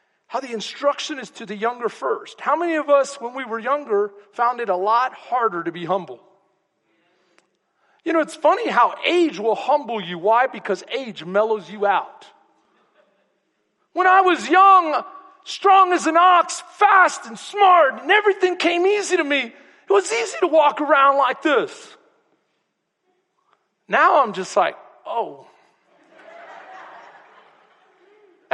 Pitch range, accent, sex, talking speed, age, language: 235-345 Hz, American, male, 145 wpm, 40-59, English